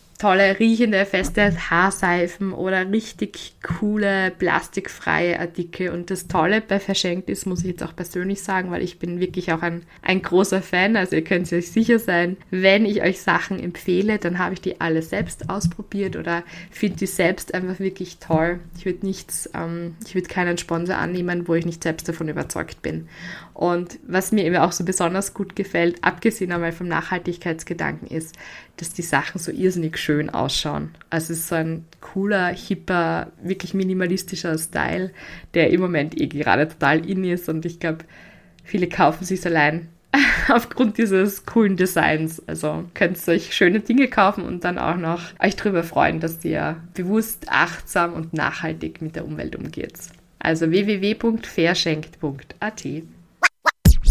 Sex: female